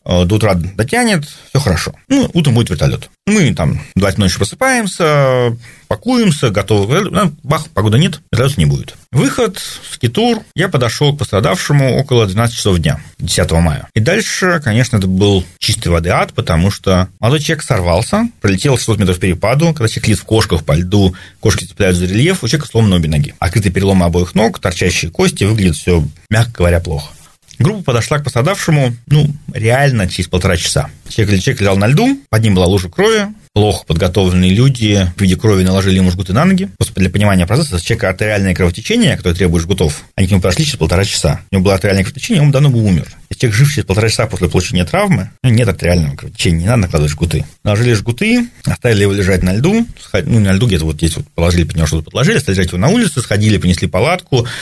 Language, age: Russian, 40-59